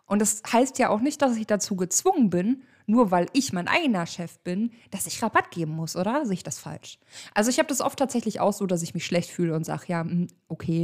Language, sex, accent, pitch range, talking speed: German, female, German, 180-250 Hz, 250 wpm